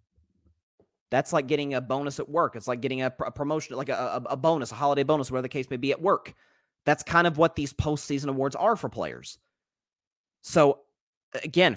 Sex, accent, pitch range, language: male, American, 145-225 Hz, English